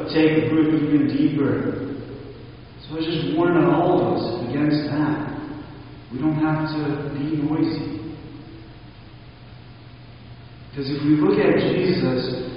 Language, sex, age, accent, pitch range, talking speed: English, male, 40-59, American, 120-175 Hz, 120 wpm